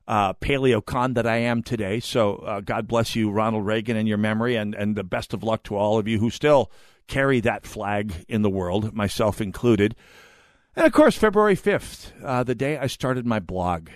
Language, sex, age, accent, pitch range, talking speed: English, male, 50-69, American, 105-130 Hz, 210 wpm